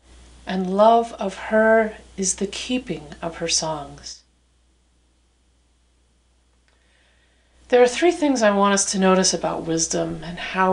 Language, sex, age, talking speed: English, female, 40-59, 130 wpm